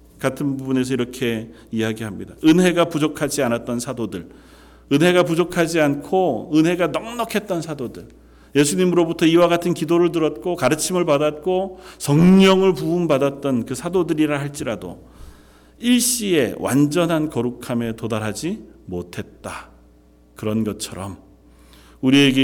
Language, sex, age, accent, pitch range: Korean, male, 40-59, native, 100-150 Hz